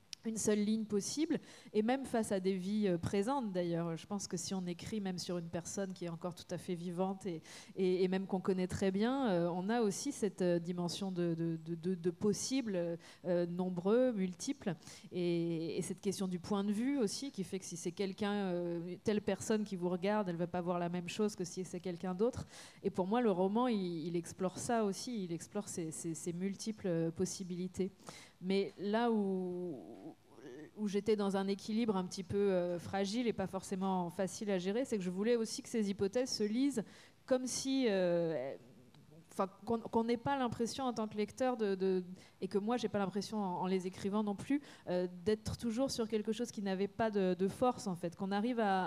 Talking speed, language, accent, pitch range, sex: 210 wpm, French, French, 180-220 Hz, female